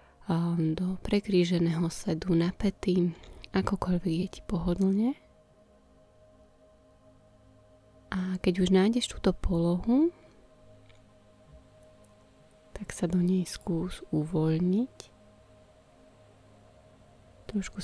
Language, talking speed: Slovak, 65 wpm